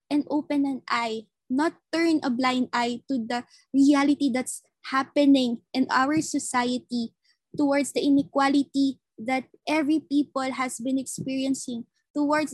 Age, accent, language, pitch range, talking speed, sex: 20-39, native, Filipino, 245-290 Hz, 130 wpm, female